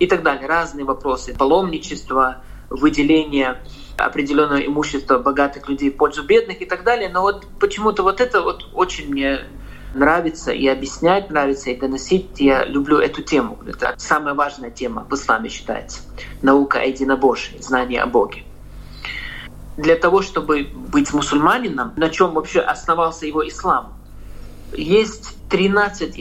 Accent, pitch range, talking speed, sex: native, 140-195 Hz, 135 wpm, male